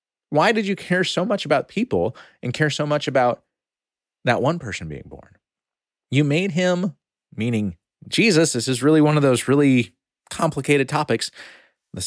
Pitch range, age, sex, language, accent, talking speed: 95-150 Hz, 30-49, male, English, American, 165 wpm